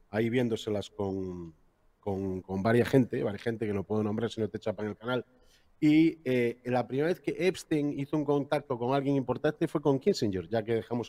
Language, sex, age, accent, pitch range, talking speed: Spanish, male, 40-59, Spanish, 100-120 Hz, 210 wpm